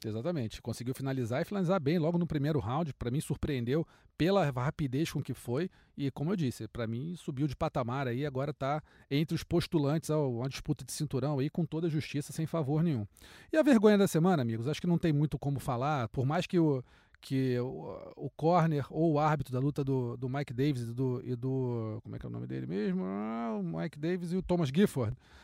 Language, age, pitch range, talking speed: Portuguese, 40-59, 125-150 Hz, 225 wpm